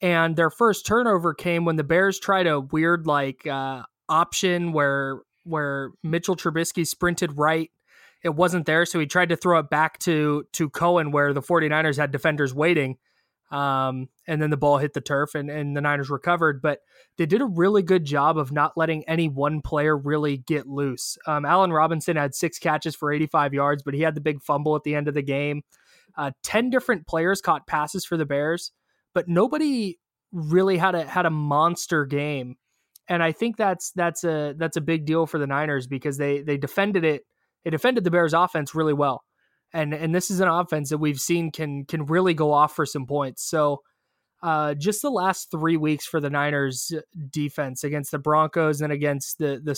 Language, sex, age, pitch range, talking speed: English, male, 20-39, 145-170 Hz, 200 wpm